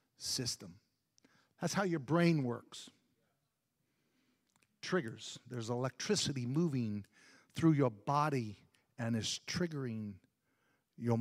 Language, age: English, 50-69